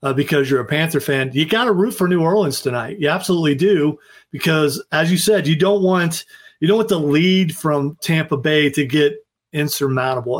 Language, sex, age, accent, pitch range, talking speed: English, male, 40-59, American, 140-170 Hz, 195 wpm